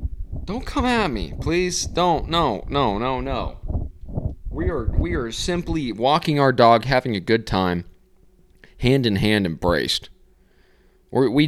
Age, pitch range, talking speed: 20-39, 100-160 Hz, 135 wpm